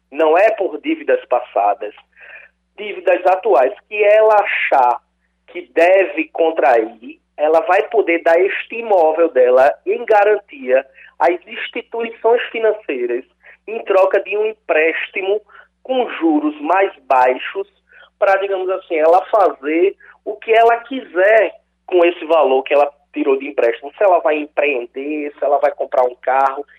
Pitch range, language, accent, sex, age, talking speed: 145-230 Hz, Portuguese, Brazilian, male, 20-39, 135 wpm